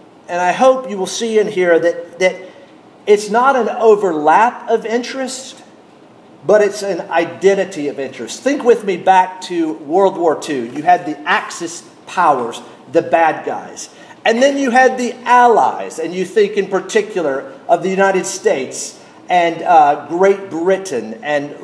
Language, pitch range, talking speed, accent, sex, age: English, 160-225 Hz, 160 wpm, American, male, 50-69